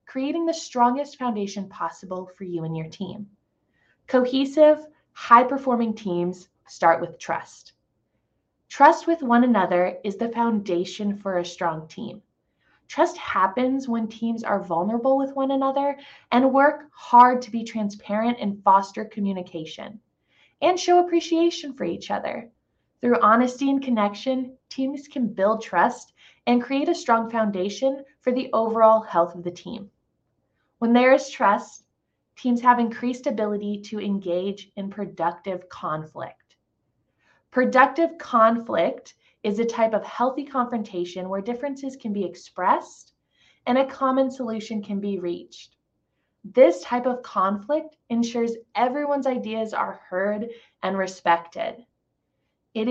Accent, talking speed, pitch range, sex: American, 130 wpm, 195-260 Hz, female